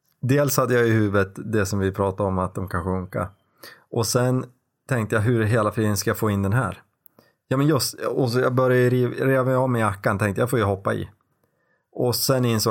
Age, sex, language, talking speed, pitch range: 20-39, male, Swedish, 230 wpm, 110-130 Hz